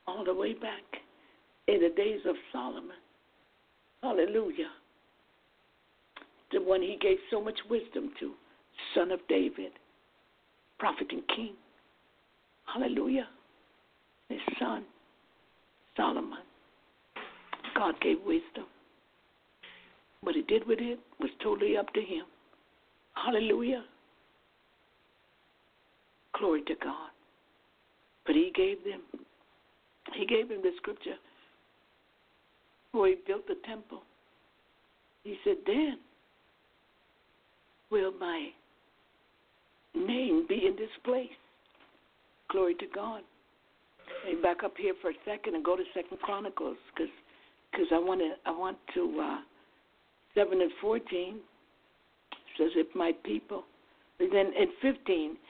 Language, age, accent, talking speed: English, 60-79, American, 110 wpm